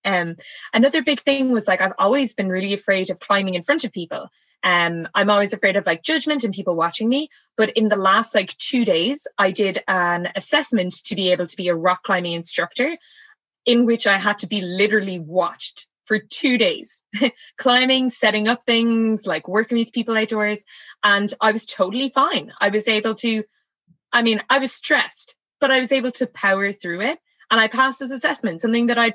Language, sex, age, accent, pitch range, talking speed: English, female, 20-39, Irish, 195-260 Hz, 205 wpm